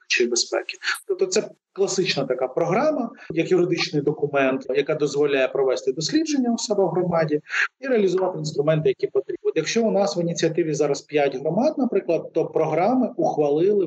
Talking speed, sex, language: 155 wpm, male, Ukrainian